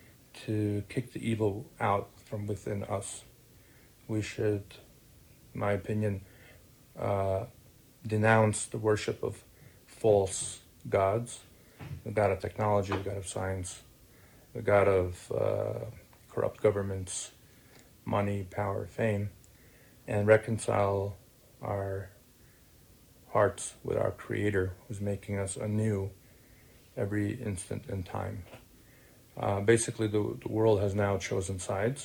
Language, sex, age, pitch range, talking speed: English, male, 40-59, 100-120 Hz, 115 wpm